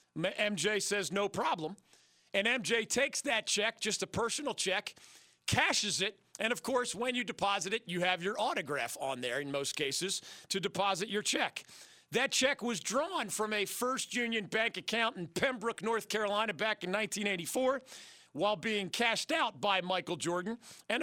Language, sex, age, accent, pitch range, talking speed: English, male, 40-59, American, 180-230 Hz, 170 wpm